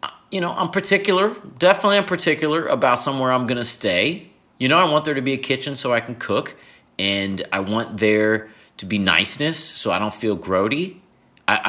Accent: American